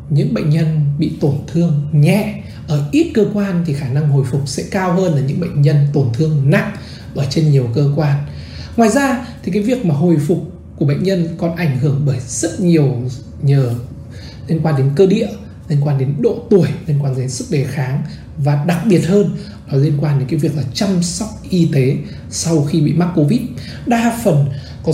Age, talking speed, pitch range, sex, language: 20-39, 210 wpm, 140-180 Hz, male, Vietnamese